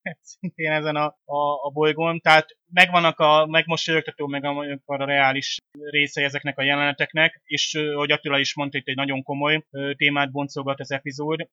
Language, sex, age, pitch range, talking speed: Hungarian, male, 30-49, 135-150 Hz, 175 wpm